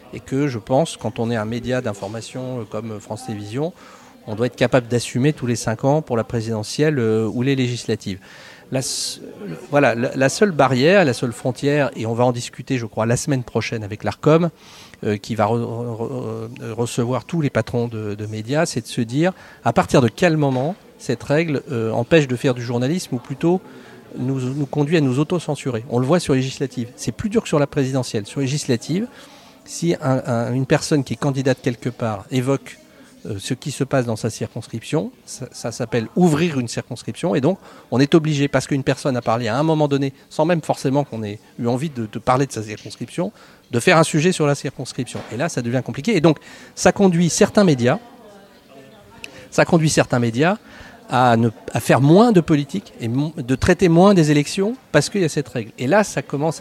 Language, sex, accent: French, male, French